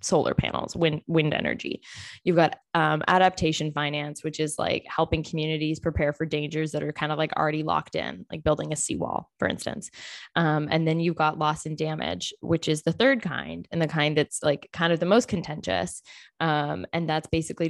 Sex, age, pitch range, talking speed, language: female, 10-29, 150-165 Hz, 200 wpm, English